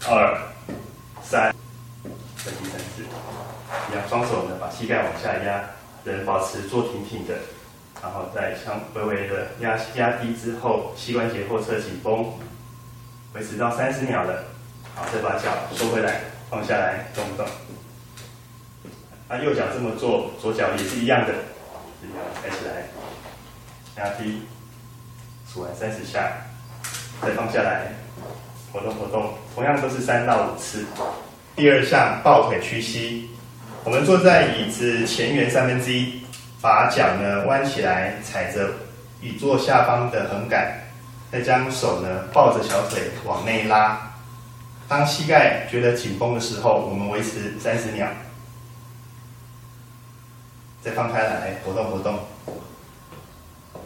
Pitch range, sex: 110-120 Hz, male